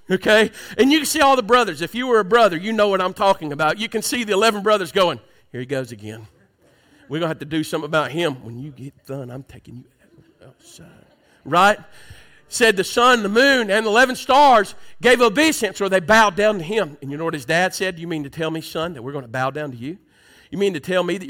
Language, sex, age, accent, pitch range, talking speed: English, male, 50-69, American, 155-205 Hz, 260 wpm